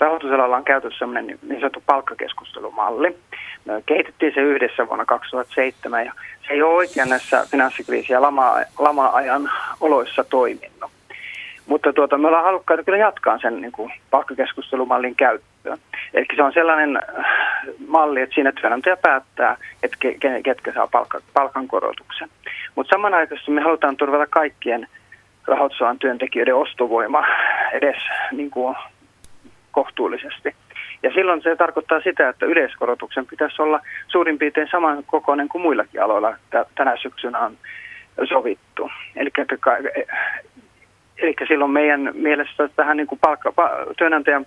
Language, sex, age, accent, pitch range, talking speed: Finnish, male, 30-49, native, 135-165 Hz, 125 wpm